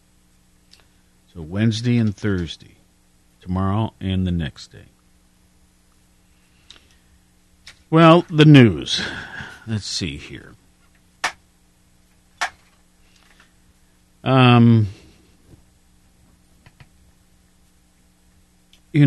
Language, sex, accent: English, male, American